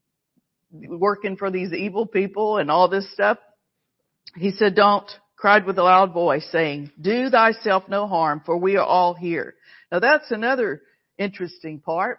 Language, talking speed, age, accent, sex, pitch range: English, 160 wpm, 50-69, American, female, 180-235 Hz